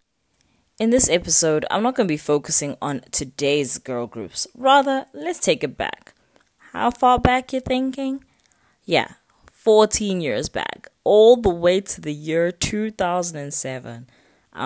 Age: 20-39